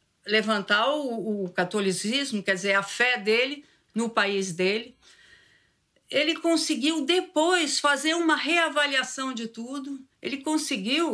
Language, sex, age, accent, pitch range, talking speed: Portuguese, female, 50-69, Brazilian, 200-280 Hz, 120 wpm